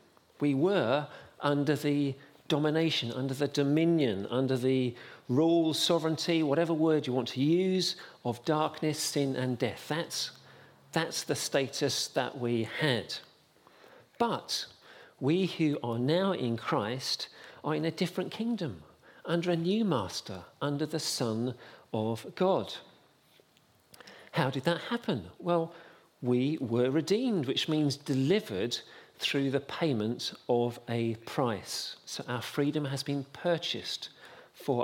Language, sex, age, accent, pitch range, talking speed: English, male, 50-69, British, 120-160 Hz, 130 wpm